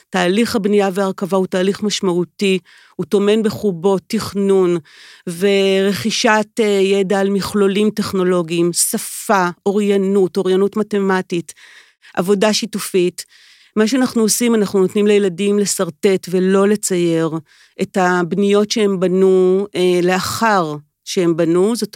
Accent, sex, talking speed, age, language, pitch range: native, female, 105 wpm, 40-59, Hebrew, 185-215 Hz